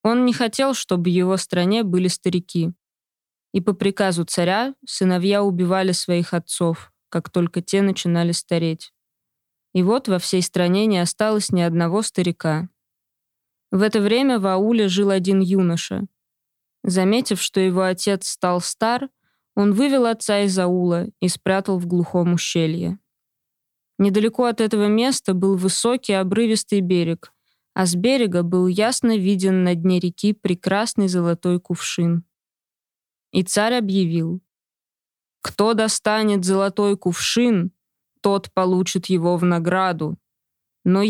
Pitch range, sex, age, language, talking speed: 175-210 Hz, female, 20-39, Russian, 130 wpm